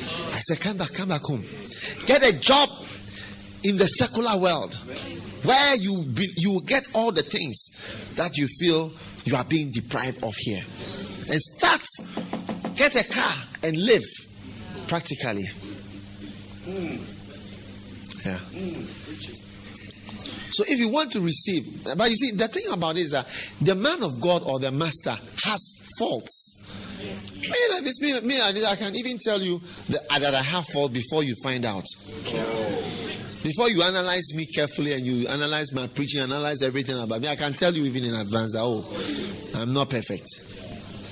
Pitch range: 110-185 Hz